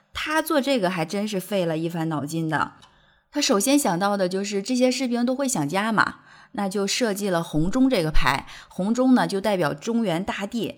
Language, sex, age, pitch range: Chinese, female, 20-39, 180-245 Hz